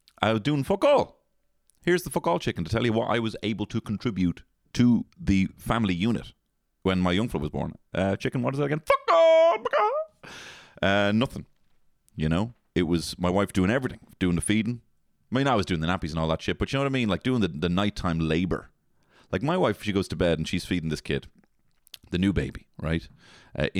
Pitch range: 85-115 Hz